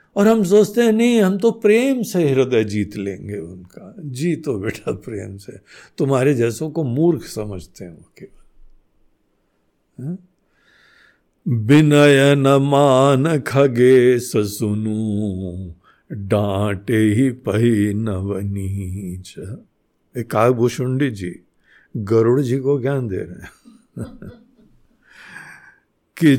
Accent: native